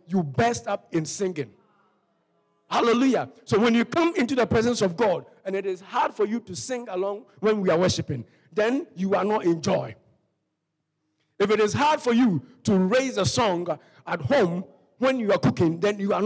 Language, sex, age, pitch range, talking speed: English, male, 50-69, 180-265 Hz, 195 wpm